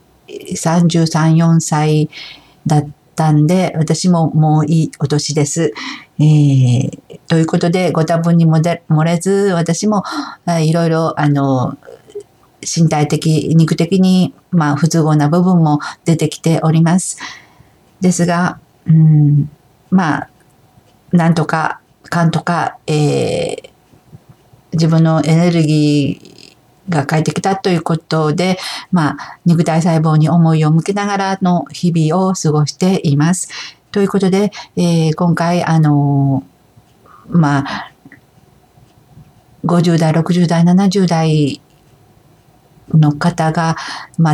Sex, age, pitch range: female, 50-69, 150-175 Hz